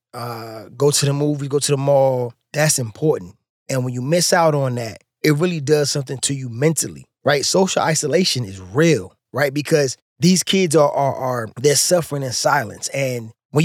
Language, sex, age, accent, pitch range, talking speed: English, male, 20-39, American, 125-160 Hz, 190 wpm